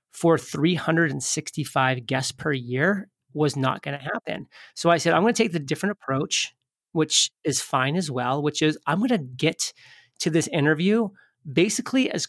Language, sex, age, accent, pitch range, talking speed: English, male, 30-49, American, 140-180 Hz, 160 wpm